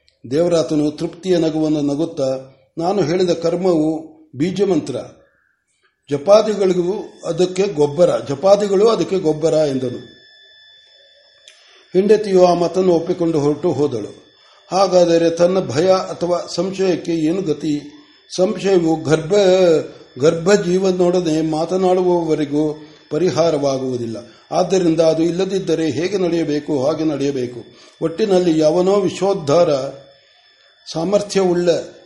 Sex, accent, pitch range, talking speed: male, native, 155-190 Hz, 75 wpm